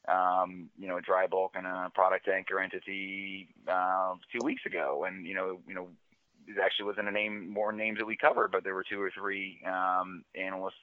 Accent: American